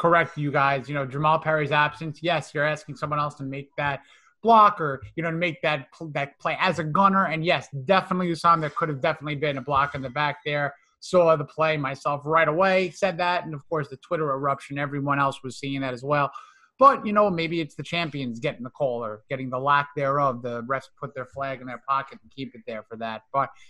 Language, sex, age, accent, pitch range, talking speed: English, male, 30-49, American, 145-175 Hz, 245 wpm